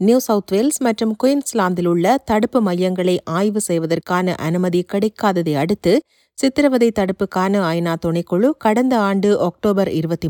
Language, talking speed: Tamil, 120 wpm